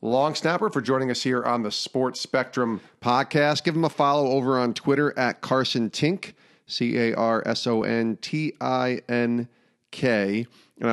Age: 40-59